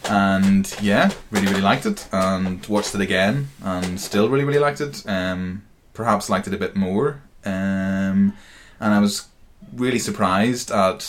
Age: 20-39